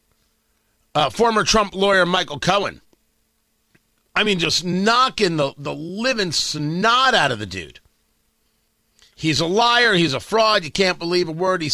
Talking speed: 155 wpm